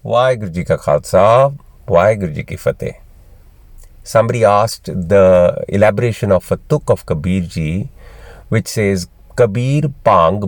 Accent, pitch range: Indian, 90-115 Hz